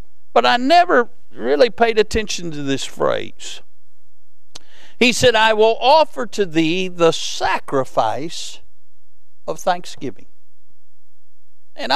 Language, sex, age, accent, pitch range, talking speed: English, male, 60-79, American, 190-265 Hz, 105 wpm